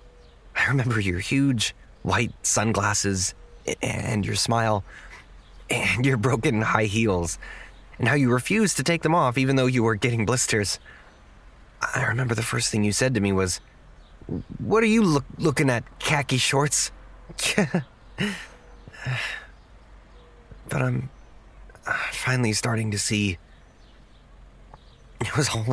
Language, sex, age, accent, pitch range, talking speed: English, male, 30-49, American, 105-145 Hz, 125 wpm